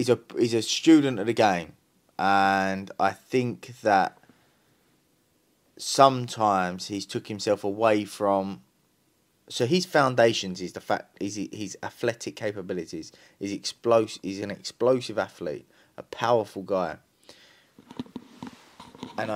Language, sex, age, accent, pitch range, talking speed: English, male, 20-39, British, 100-125 Hz, 120 wpm